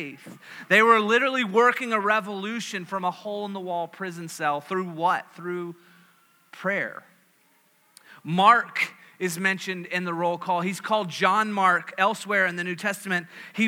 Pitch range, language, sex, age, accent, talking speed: 185-225 Hz, English, male, 30-49, American, 140 wpm